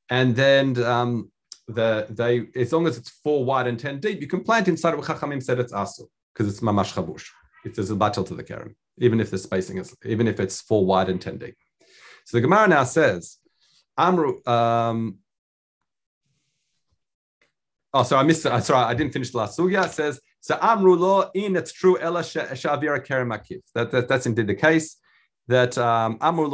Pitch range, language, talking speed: 115-150 Hz, English, 190 wpm